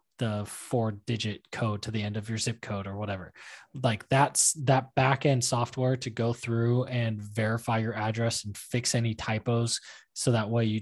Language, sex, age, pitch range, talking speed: English, male, 20-39, 110-125 Hz, 185 wpm